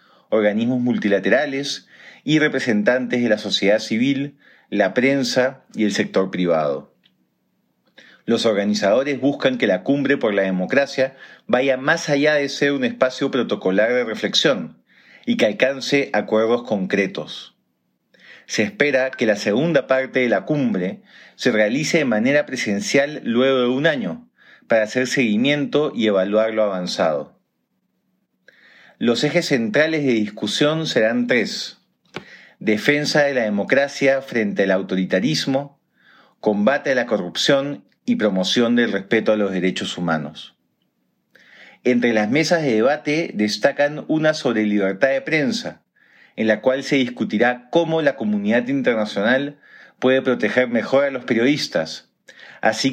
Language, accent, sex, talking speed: Spanish, Argentinian, male, 130 wpm